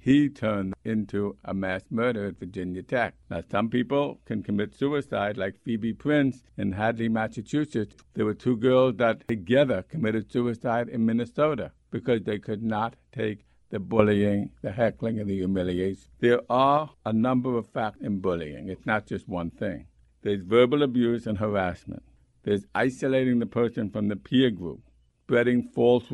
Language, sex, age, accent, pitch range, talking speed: English, male, 60-79, American, 105-130 Hz, 165 wpm